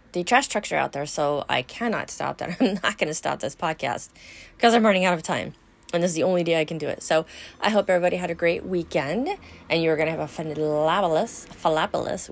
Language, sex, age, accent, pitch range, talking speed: English, female, 30-49, American, 145-200 Hz, 240 wpm